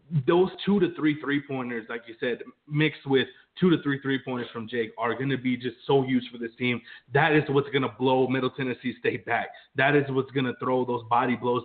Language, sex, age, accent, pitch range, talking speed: English, male, 30-49, American, 125-155 Hz, 240 wpm